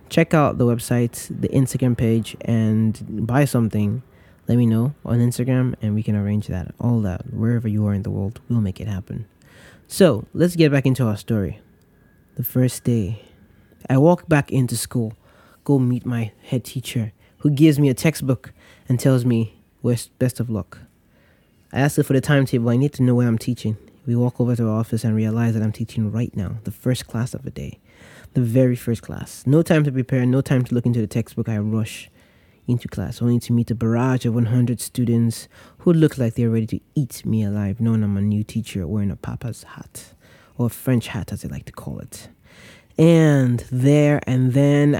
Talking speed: 205 wpm